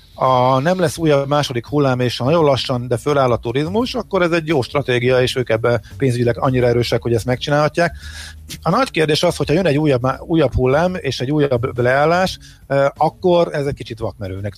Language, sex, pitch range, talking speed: Hungarian, male, 110-140 Hz, 195 wpm